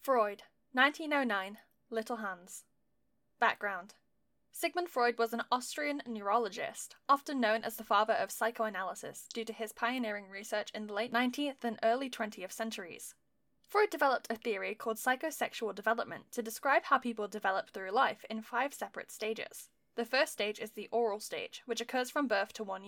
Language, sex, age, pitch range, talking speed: English, female, 10-29, 220-275 Hz, 165 wpm